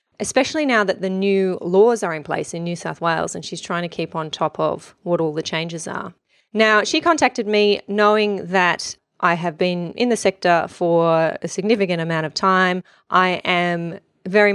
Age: 30-49